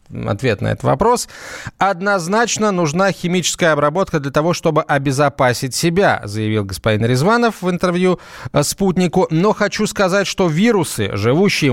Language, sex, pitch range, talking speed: Russian, male, 125-170 Hz, 130 wpm